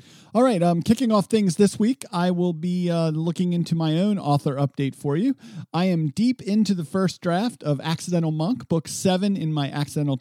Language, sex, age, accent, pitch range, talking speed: English, male, 50-69, American, 145-185 Hz, 200 wpm